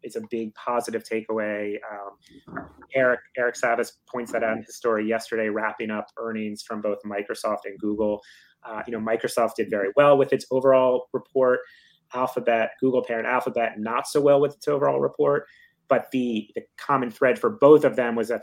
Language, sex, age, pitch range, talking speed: English, male, 30-49, 110-130 Hz, 185 wpm